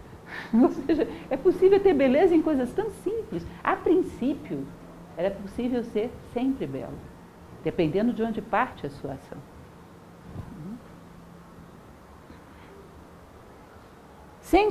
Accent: Brazilian